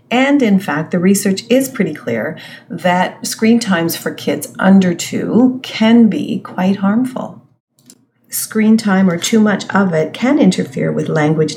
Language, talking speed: English, 155 wpm